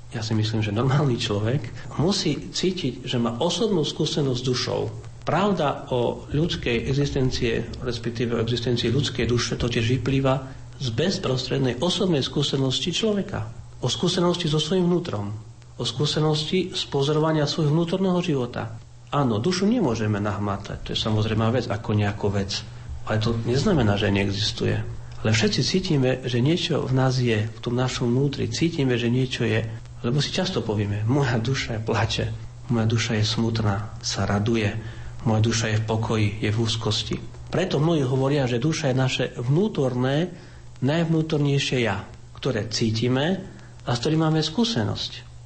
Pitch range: 115-140 Hz